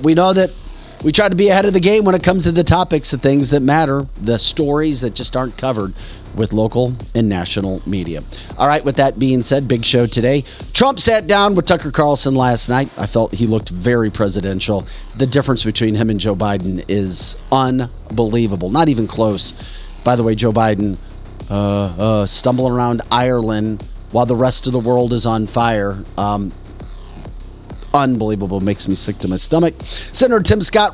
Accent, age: American, 40-59